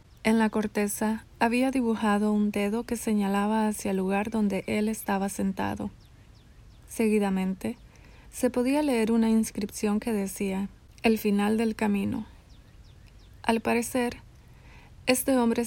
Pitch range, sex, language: 200-230 Hz, female, Spanish